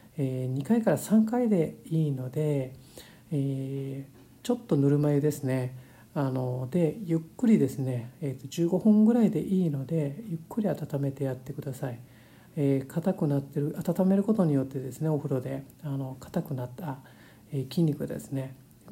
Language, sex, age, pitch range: Japanese, male, 50-69, 130-150 Hz